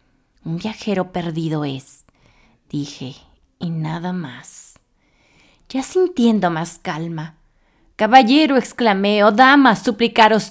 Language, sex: Spanish, female